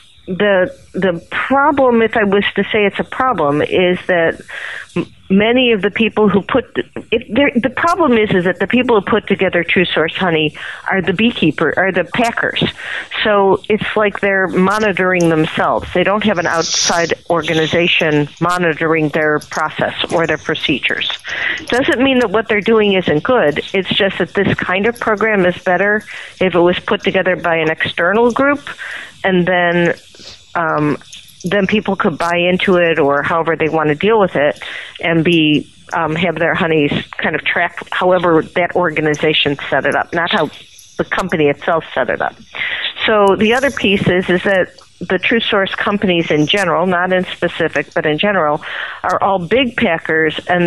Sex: female